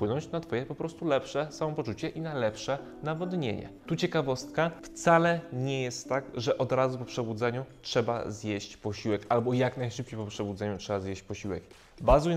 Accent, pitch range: native, 115-145 Hz